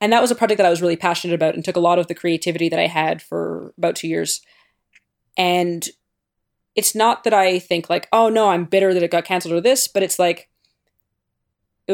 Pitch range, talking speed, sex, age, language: 165-190 Hz, 230 wpm, female, 20-39, English